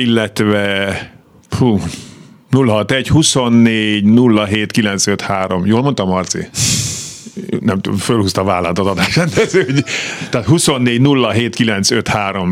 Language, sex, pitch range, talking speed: Hungarian, male, 95-120 Hz, 70 wpm